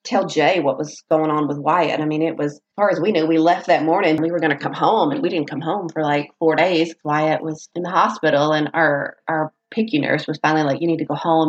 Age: 30-49